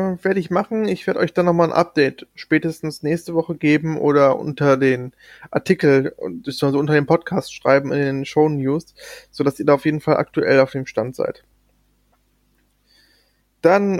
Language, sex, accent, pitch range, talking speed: German, male, German, 155-190 Hz, 170 wpm